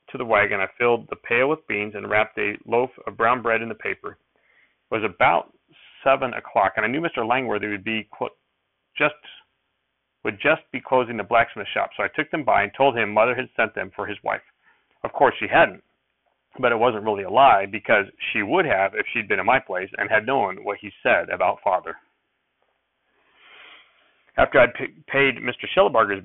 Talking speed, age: 205 wpm, 40-59